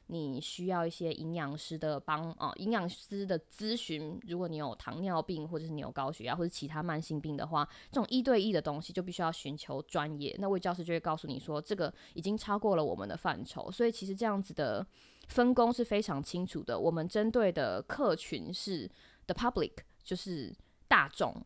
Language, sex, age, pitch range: Chinese, female, 20-39, 155-195 Hz